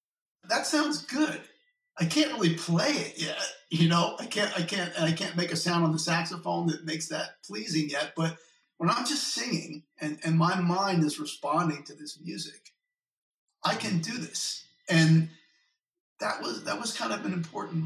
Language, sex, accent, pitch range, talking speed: English, male, American, 155-175 Hz, 190 wpm